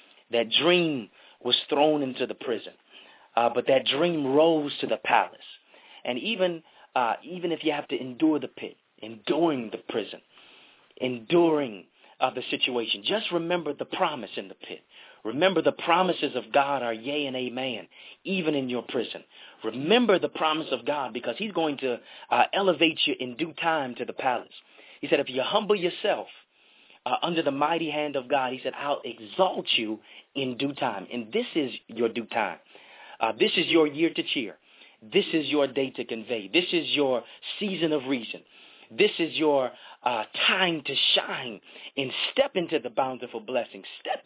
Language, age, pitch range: English, 30-49, 130-180 Hz